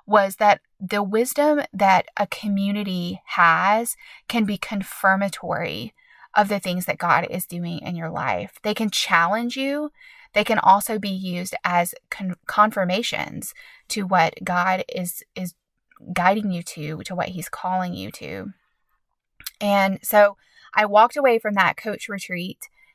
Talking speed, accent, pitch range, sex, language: 145 wpm, American, 185-210 Hz, female, English